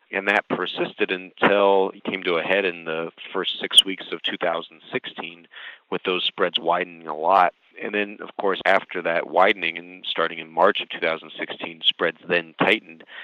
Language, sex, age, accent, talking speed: English, male, 40-59, American, 170 wpm